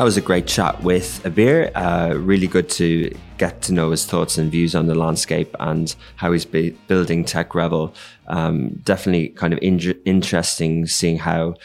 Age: 20-39